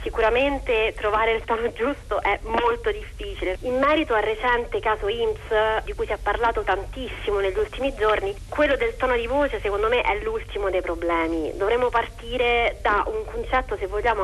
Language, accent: Italian, native